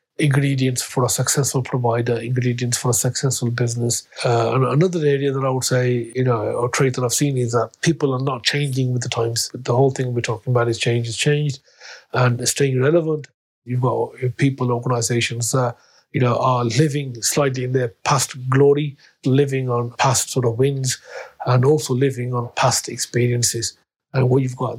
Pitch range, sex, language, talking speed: 120-135 Hz, male, English, 190 wpm